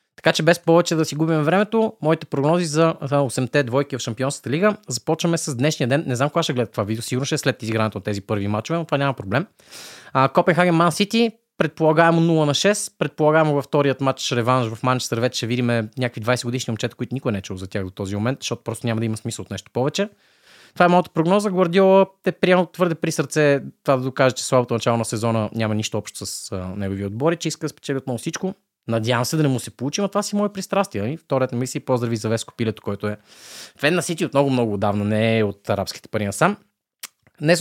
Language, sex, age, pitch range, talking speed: Bulgarian, male, 20-39, 115-165 Hz, 220 wpm